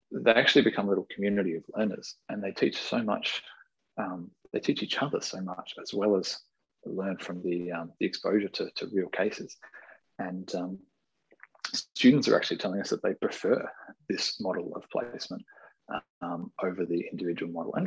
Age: 20-39